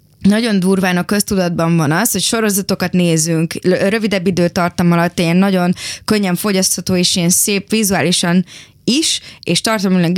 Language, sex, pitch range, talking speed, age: Hungarian, female, 165-200 Hz, 135 wpm, 20-39